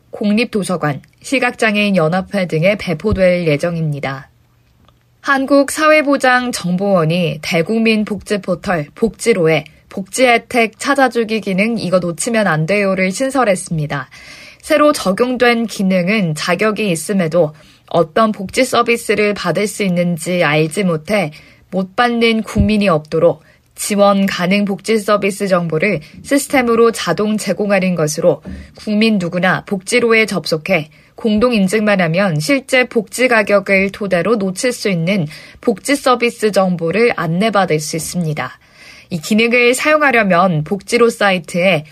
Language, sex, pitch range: Korean, female, 175-230 Hz